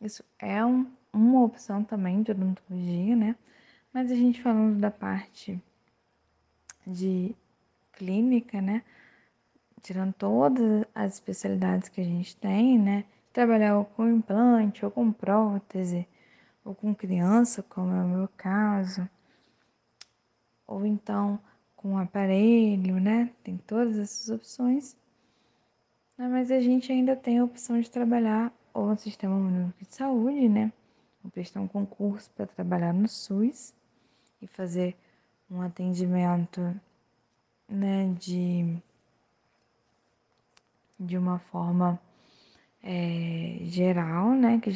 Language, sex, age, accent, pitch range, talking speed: Portuguese, female, 10-29, Brazilian, 180-220 Hz, 115 wpm